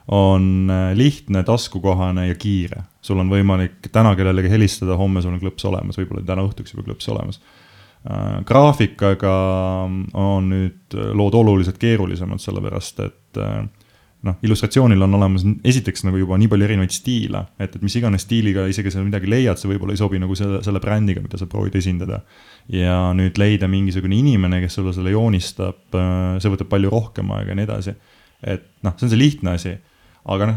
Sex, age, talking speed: male, 20-39, 165 wpm